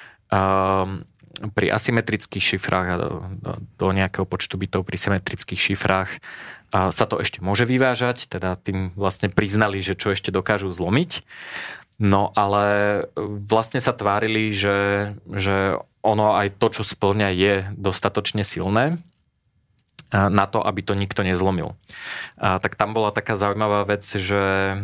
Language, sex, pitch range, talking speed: Slovak, male, 95-110 Hz, 140 wpm